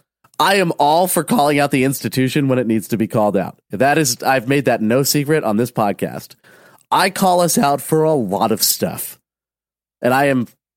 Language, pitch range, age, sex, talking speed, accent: English, 110-165 Hz, 30-49, male, 205 wpm, American